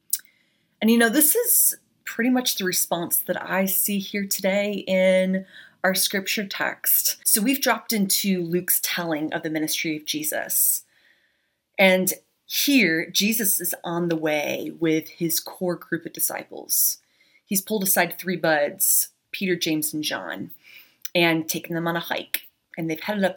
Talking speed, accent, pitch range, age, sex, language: 155 wpm, American, 170-210 Hz, 30-49, female, English